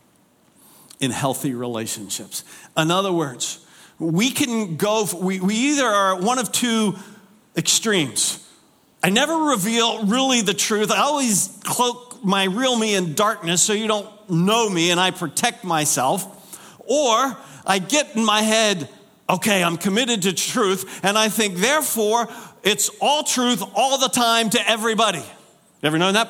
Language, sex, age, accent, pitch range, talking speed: English, male, 50-69, American, 155-215 Hz, 155 wpm